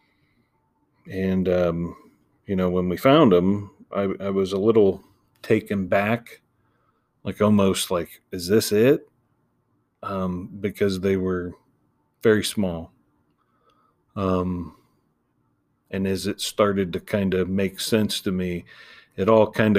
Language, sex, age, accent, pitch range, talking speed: English, male, 40-59, American, 90-100 Hz, 125 wpm